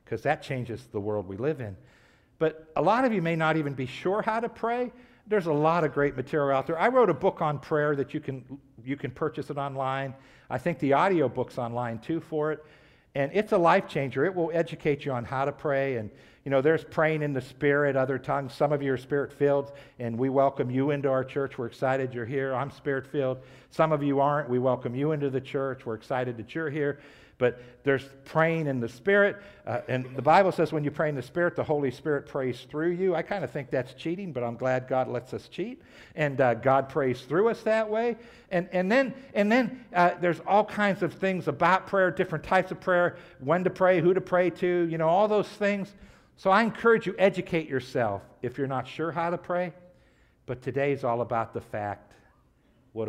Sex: male